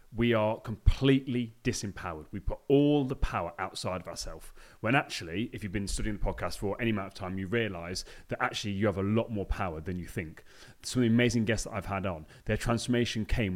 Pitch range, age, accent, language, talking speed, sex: 100-125 Hz, 30-49, British, English, 220 wpm, male